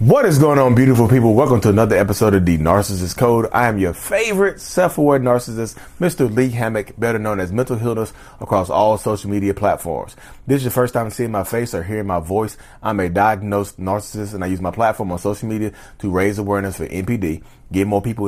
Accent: American